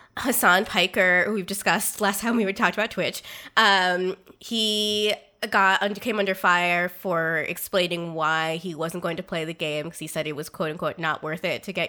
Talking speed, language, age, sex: 200 wpm, English, 20-39, female